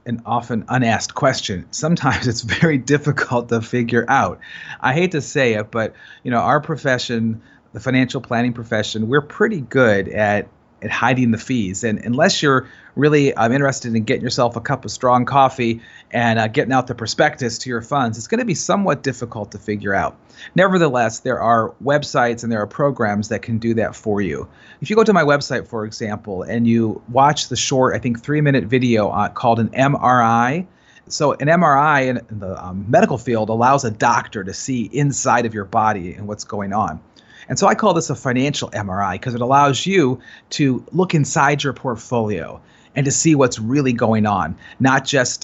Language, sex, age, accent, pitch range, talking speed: English, male, 30-49, American, 115-140 Hz, 195 wpm